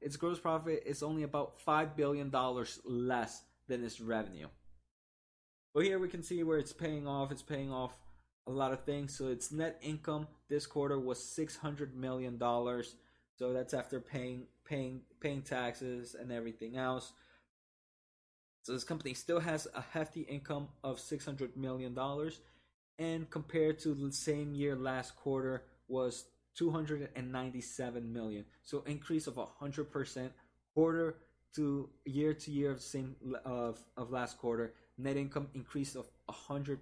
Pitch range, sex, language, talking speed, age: 125-145 Hz, male, English, 160 wpm, 20-39